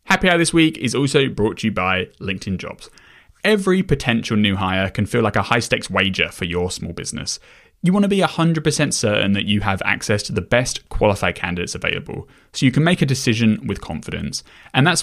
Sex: male